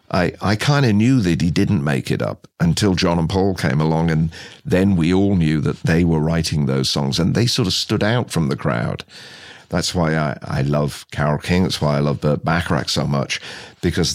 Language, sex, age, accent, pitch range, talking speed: English, male, 50-69, British, 80-105 Hz, 225 wpm